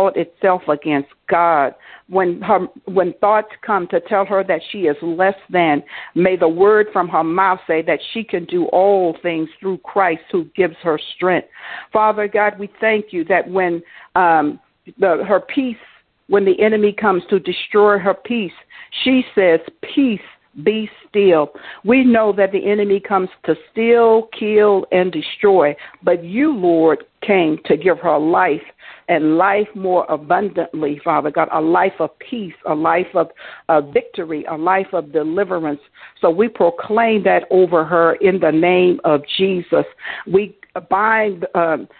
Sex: female